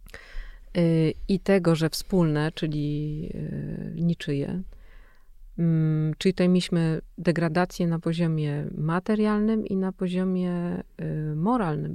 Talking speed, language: 85 wpm, Polish